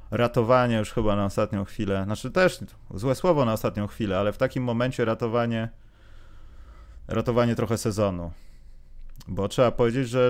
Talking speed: 145 wpm